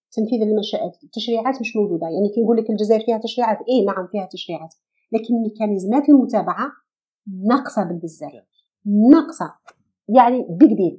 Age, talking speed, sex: 40-59, 130 wpm, female